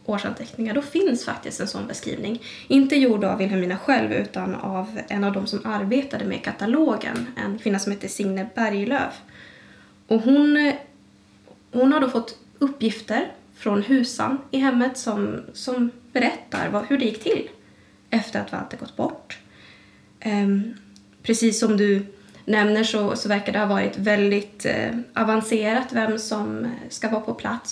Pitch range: 195-235 Hz